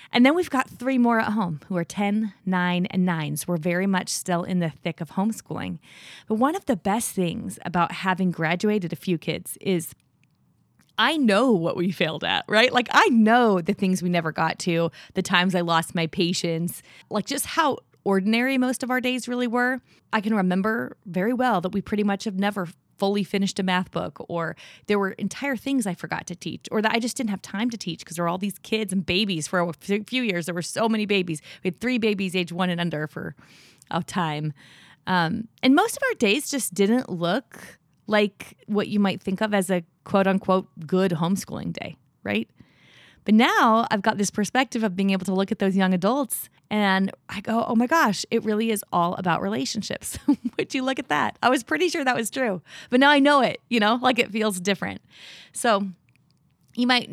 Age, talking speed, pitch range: 20-39, 215 wpm, 175-225 Hz